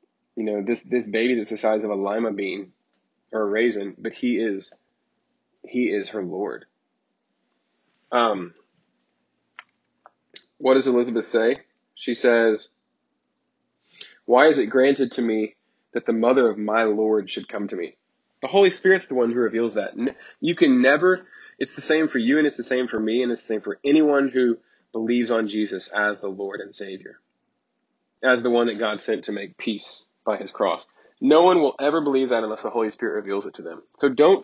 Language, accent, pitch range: English, American, 110-135 Hz